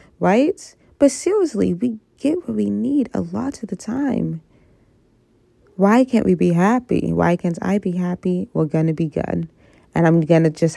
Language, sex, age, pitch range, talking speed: English, female, 20-39, 160-190 Hz, 175 wpm